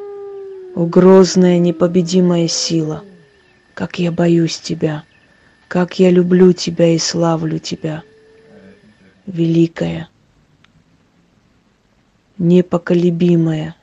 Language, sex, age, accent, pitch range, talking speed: Russian, female, 20-39, native, 170-280 Hz, 70 wpm